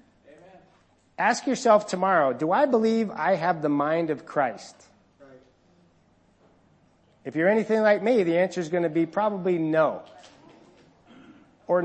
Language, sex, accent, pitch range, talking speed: English, male, American, 180-245 Hz, 130 wpm